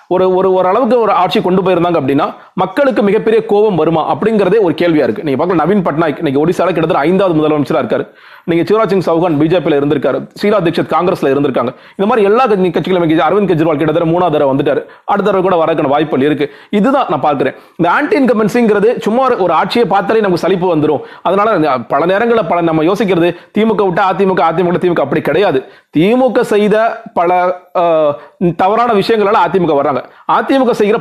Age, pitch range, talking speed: 30-49, 170-225 Hz, 65 wpm